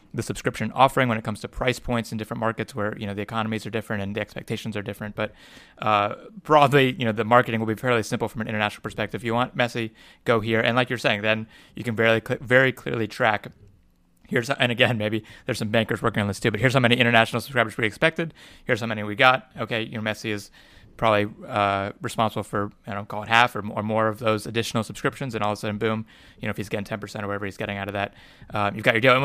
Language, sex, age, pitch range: English, male, 30-49, 110-125 Hz